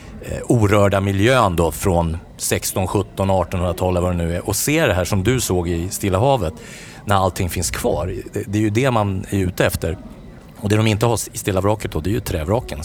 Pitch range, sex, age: 95-115 Hz, male, 40-59